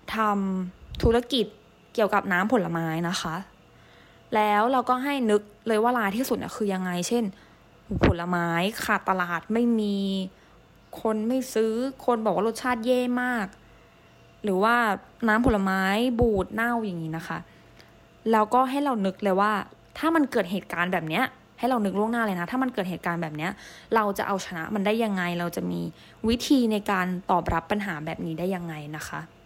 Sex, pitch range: female, 190-240 Hz